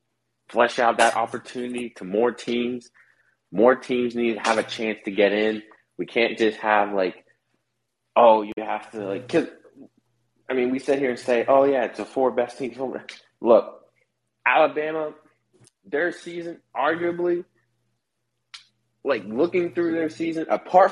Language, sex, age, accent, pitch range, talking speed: English, male, 20-39, American, 100-135 Hz, 150 wpm